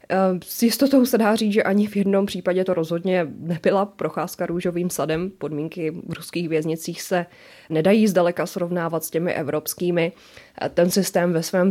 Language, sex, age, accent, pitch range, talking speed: Czech, female, 20-39, native, 160-185 Hz, 160 wpm